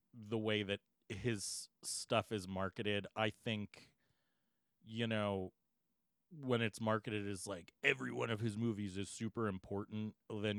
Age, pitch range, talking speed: 30-49, 100-120 Hz, 140 wpm